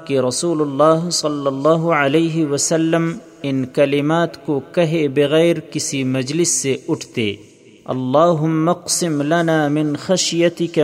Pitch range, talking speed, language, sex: 145-165 Hz, 100 wpm, Urdu, male